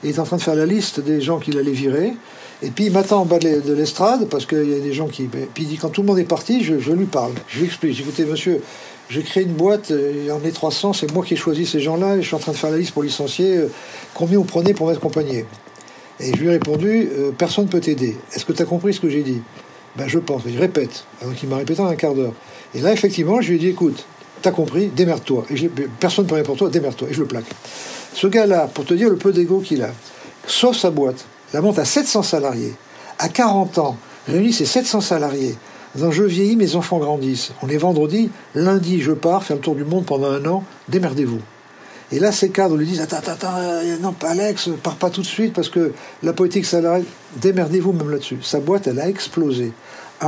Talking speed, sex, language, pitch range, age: 255 wpm, male, French, 145-185 Hz, 50-69